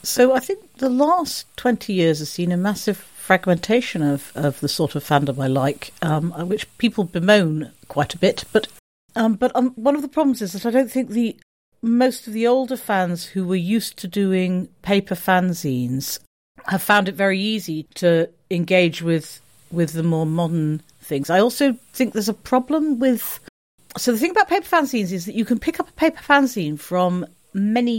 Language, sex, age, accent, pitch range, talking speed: English, female, 50-69, British, 165-235 Hz, 195 wpm